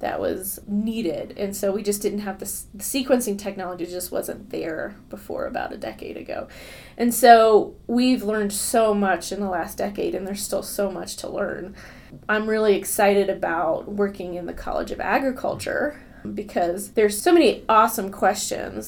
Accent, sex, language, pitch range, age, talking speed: American, female, English, 195-220 Hz, 20-39, 170 wpm